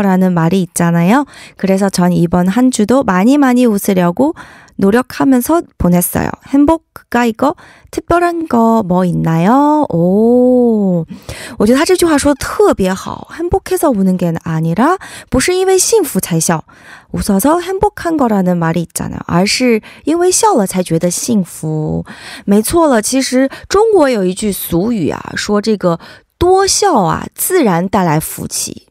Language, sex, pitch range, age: Korean, female, 180-285 Hz, 20-39